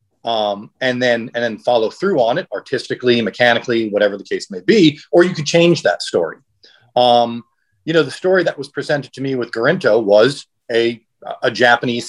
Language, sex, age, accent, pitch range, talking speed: English, male, 40-59, American, 115-155 Hz, 190 wpm